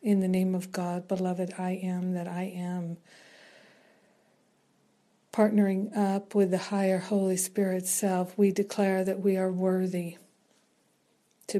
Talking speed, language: 135 wpm, English